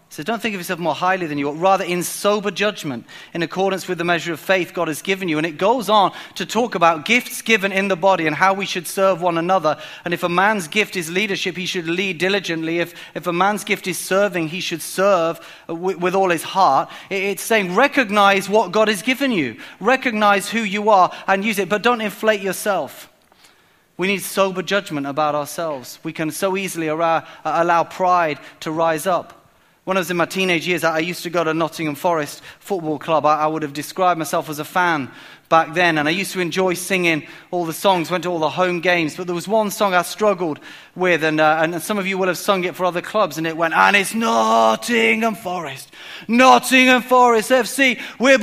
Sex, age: male, 30-49